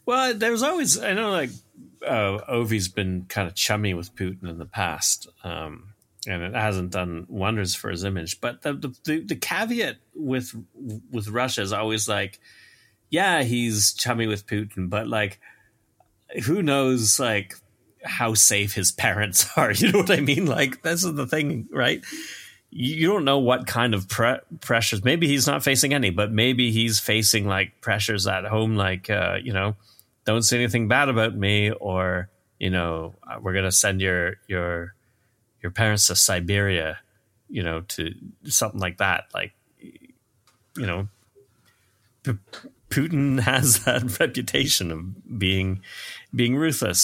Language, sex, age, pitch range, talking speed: English, male, 30-49, 95-125 Hz, 160 wpm